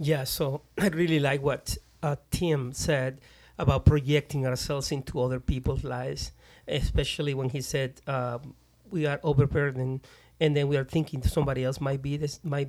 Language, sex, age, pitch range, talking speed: English, male, 40-59, 130-155 Hz, 165 wpm